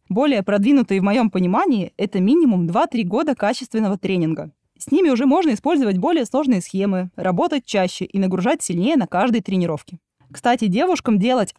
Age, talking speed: 20-39, 160 wpm